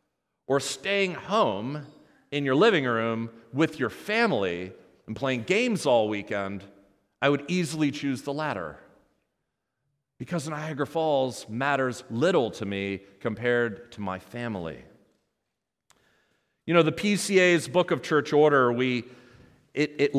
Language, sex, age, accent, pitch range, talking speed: English, male, 40-59, American, 125-200 Hz, 130 wpm